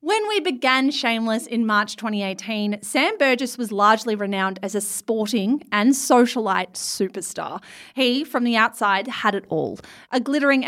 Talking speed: 150 wpm